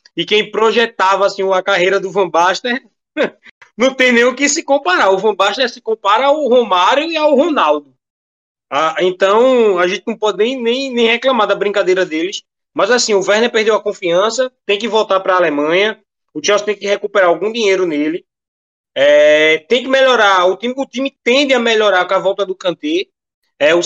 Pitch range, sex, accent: 195-260 Hz, male, Brazilian